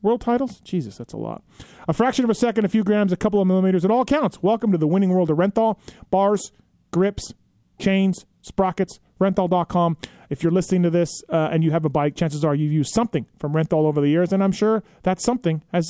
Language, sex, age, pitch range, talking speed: English, male, 30-49, 160-205 Hz, 225 wpm